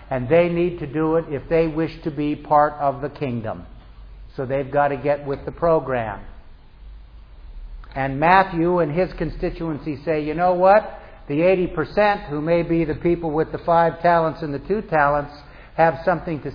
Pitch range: 140-170 Hz